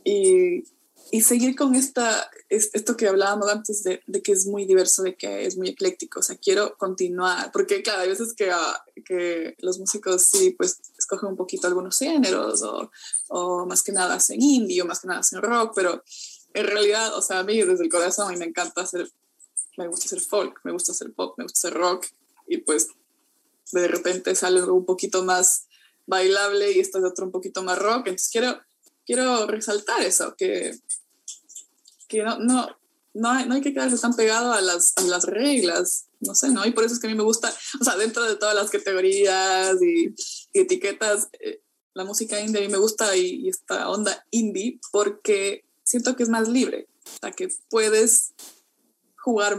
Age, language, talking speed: 20-39, English, 195 wpm